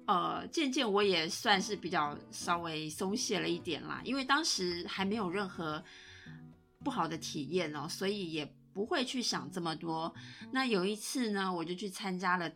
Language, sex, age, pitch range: Chinese, female, 30-49, 170-220 Hz